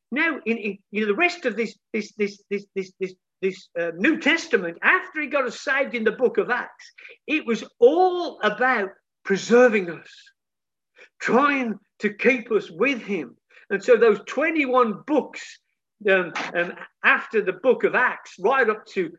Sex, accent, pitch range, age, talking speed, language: male, British, 195-295 Hz, 50-69, 170 wpm, English